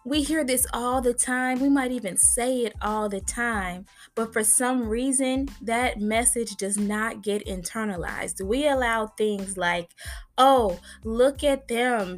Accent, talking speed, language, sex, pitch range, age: American, 160 wpm, English, female, 200-250 Hz, 20-39